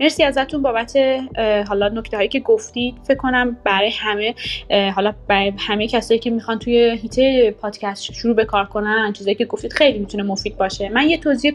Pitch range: 210-260 Hz